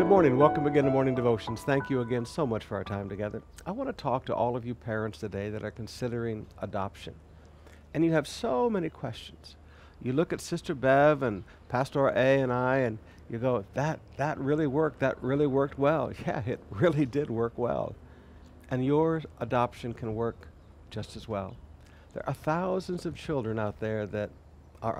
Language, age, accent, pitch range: English, 60-79, American, 95-145 Hz